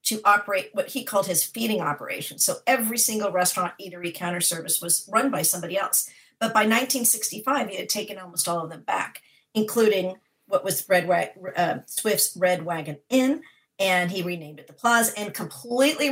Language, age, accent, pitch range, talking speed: Dutch, 50-69, American, 180-230 Hz, 180 wpm